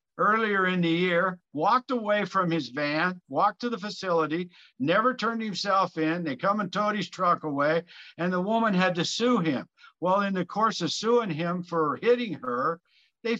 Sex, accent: male, American